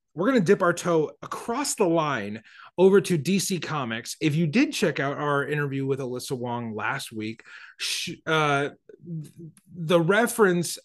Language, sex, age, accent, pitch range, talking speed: English, male, 30-49, American, 135-175 Hz, 155 wpm